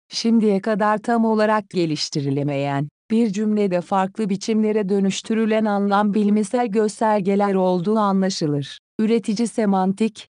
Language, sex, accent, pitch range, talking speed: Turkish, female, native, 190-220 Hz, 100 wpm